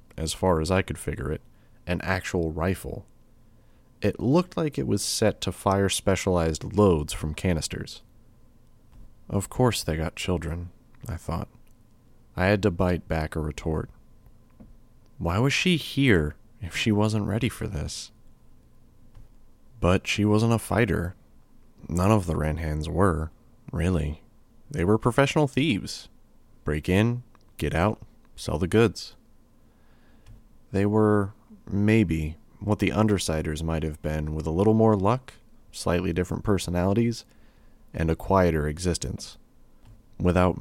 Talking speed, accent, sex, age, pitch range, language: 135 wpm, American, male, 30-49, 85-115 Hz, English